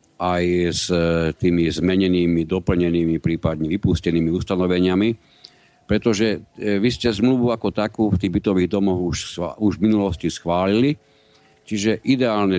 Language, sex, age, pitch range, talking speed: Slovak, male, 50-69, 85-110 Hz, 120 wpm